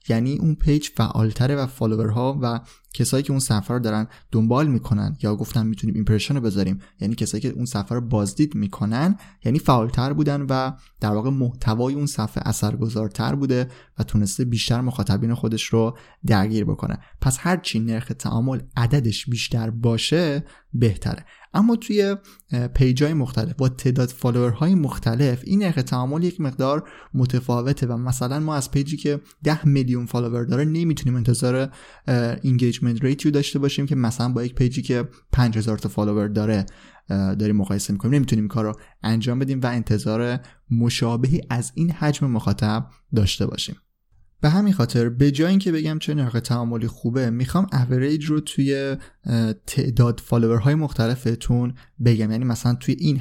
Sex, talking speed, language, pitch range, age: male, 155 wpm, Persian, 110-140 Hz, 20-39